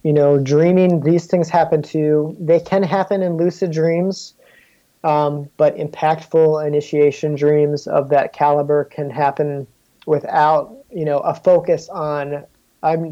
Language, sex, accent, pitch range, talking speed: English, male, American, 145-170 Hz, 135 wpm